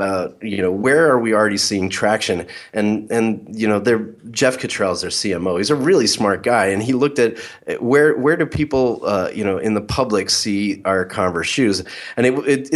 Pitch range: 100-125 Hz